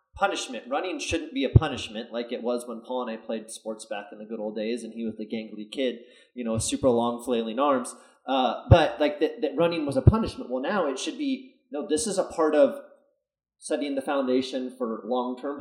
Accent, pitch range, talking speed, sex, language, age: American, 120-195 Hz, 230 wpm, male, English, 30-49